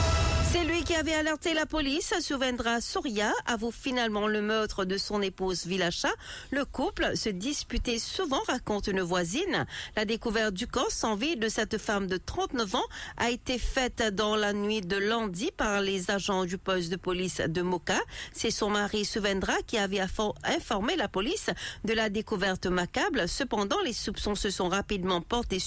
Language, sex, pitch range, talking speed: English, female, 195-270 Hz, 175 wpm